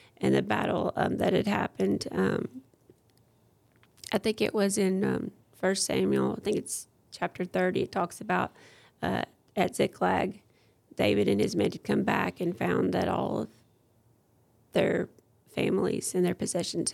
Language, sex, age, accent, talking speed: English, female, 30-49, American, 155 wpm